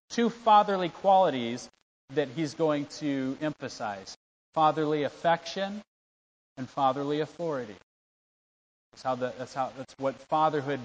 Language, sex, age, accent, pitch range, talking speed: English, male, 40-59, American, 135-170 Hz, 115 wpm